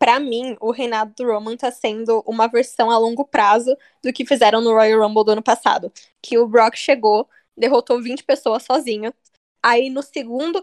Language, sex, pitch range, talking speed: Portuguese, female, 220-275 Hz, 185 wpm